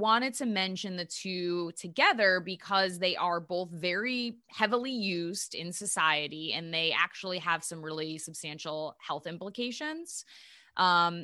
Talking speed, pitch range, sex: 135 wpm, 165-210 Hz, female